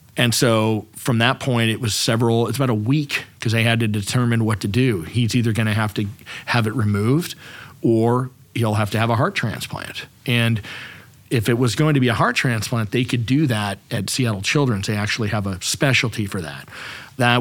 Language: English